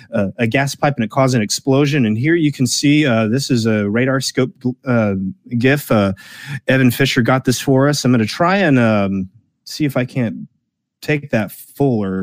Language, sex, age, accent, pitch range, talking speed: English, male, 30-49, American, 110-145 Hz, 200 wpm